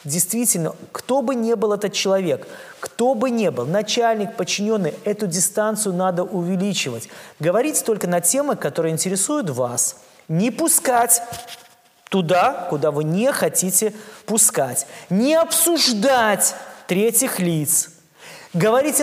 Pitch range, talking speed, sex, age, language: 175-240 Hz, 115 wpm, male, 20-39, Russian